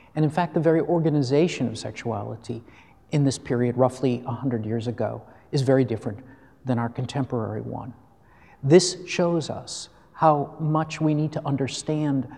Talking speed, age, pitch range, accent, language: 150 wpm, 50-69, 130-165 Hz, American, English